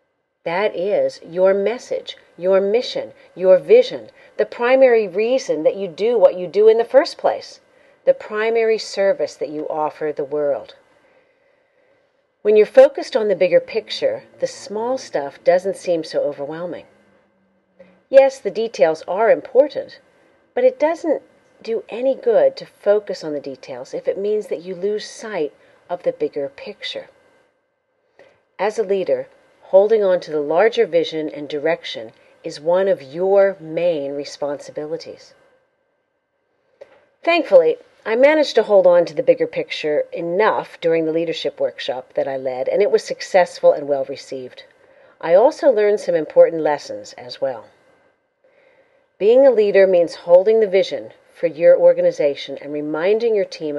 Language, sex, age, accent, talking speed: English, female, 40-59, American, 150 wpm